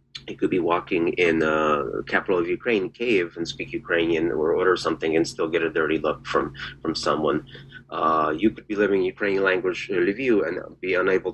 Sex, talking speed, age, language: male, 200 wpm, 30-49, English